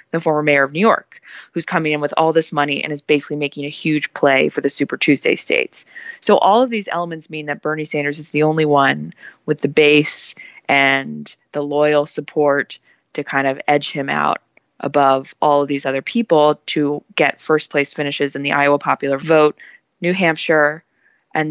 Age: 20-39